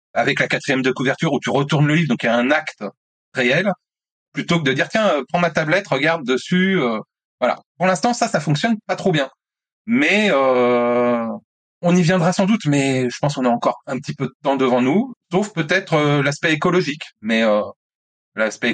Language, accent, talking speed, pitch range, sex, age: French, French, 200 wpm, 120-170 Hz, male, 30-49